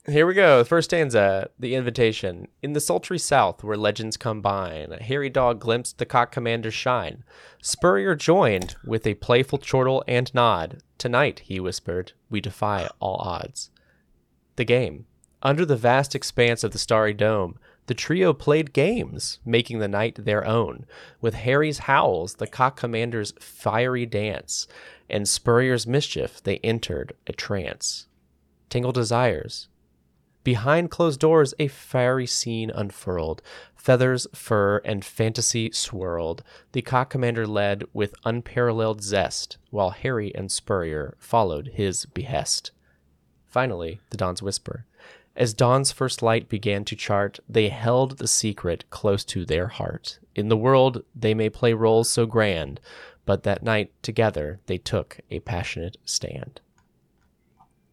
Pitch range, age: 100-125 Hz, 30-49